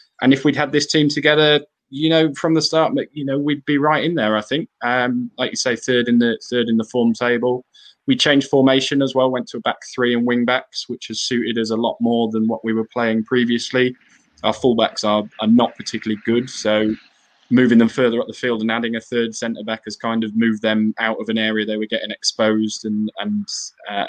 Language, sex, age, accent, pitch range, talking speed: English, male, 20-39, British, 110-125 Hz, 235 wpm